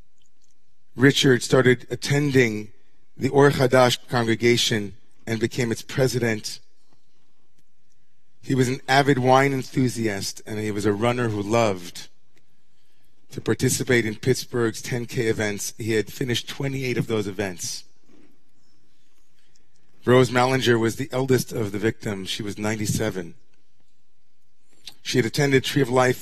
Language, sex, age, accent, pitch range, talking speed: English, male, 30-49, American, 115-130 Hz, 120 wpm